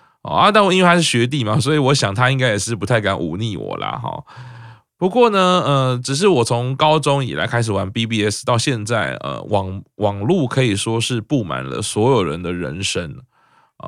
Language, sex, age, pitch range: Chinese, male, 20-39, 105-140 Hz